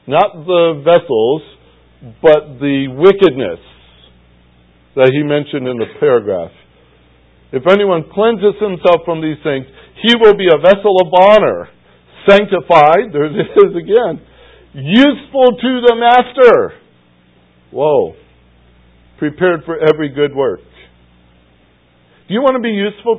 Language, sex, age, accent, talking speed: English, male, 50-69, American, 120 wpm